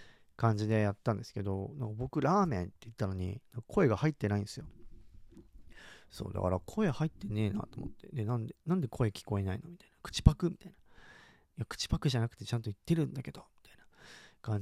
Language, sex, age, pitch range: Japanese, male, 40-59, 100-135 Hz